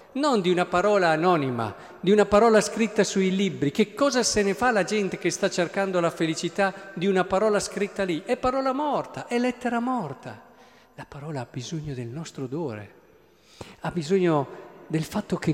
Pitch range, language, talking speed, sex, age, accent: 130-185 Hz, Italian, 180 wpm, male, 50-69, native